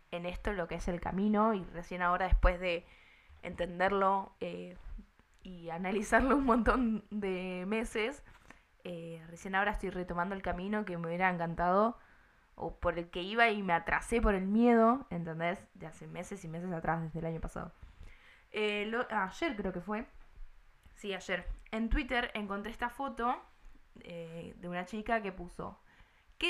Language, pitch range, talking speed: Spanish, 175-225 Hz, 165 wpm